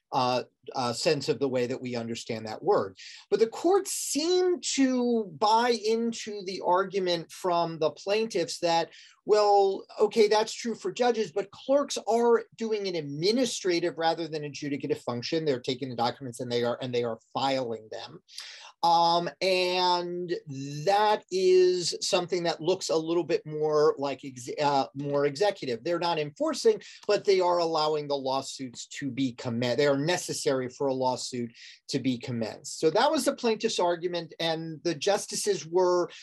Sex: male